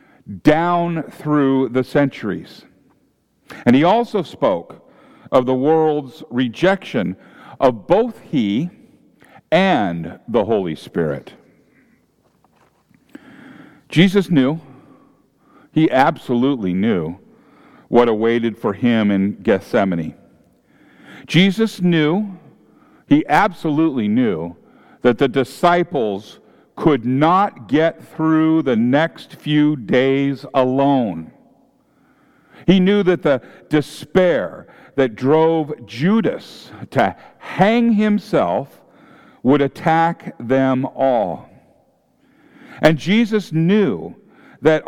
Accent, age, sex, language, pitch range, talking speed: American, 50-69, male, English, 135-190 Hz, 90 wpm